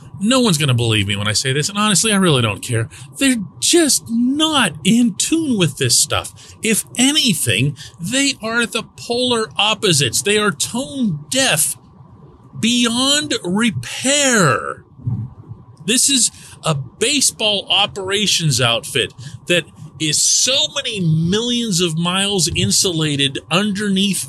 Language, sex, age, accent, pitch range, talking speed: English, male, 40-59, American, 130-210 Hz, 125 wpm